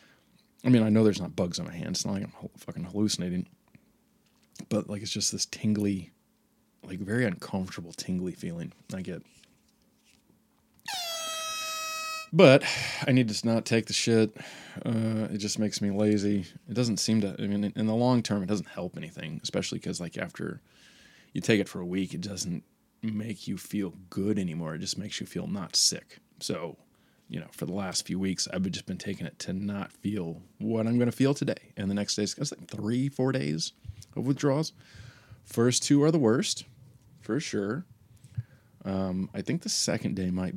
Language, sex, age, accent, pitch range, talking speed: English, male, 20-39, American, 100-135 Hz, 190 wpm